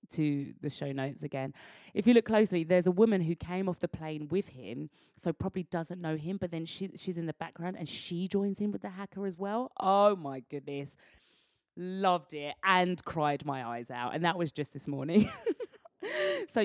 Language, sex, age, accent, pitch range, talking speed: English, female, 30-49, British, 145-205 Hz, 205 wpm